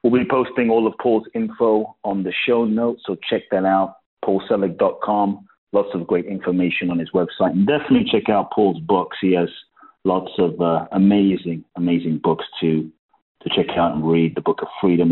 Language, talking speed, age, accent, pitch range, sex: English, 185 wpm, 40-59, British, 80-100 Hz, male